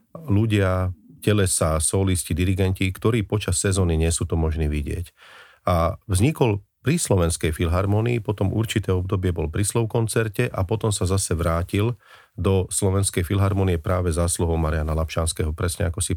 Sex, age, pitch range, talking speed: male, 40-59, 85-105 Hz, 140 wpm